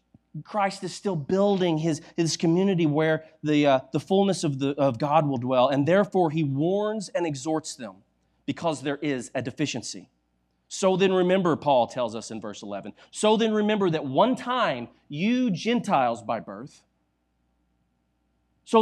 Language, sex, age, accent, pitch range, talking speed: English, male, 30-49, American, 110-170 Hz, 160 wpm